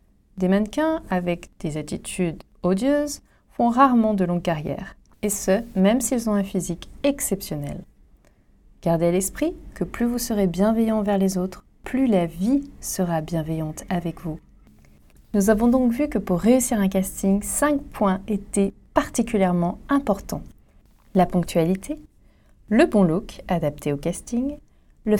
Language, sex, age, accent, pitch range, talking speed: French, female, 30-49, French, 175-225 Hz, 145 wpm